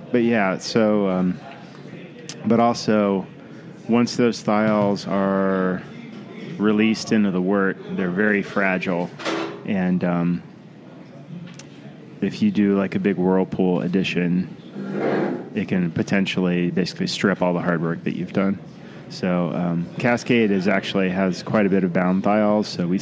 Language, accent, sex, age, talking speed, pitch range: English, American, male, 20-39, 140 wpm, 90-110 Hz